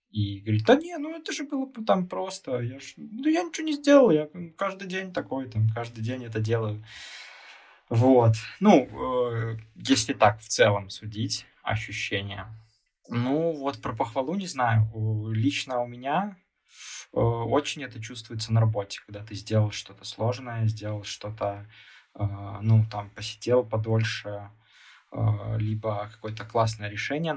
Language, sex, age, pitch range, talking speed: Russian, male, 20-39, 110-125 Hz, 140 wpm